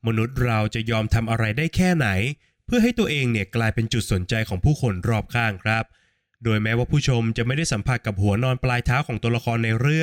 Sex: male